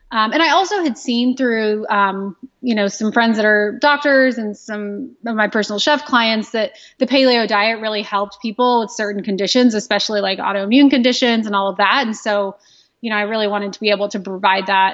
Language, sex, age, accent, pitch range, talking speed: English, female, 20-39, American, 200-240 Hz, 215 wpm